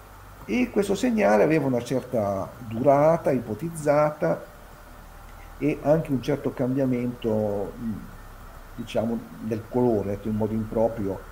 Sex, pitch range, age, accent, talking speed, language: male, 100-155 Hz, 50-69, native, 100 wpm, Italian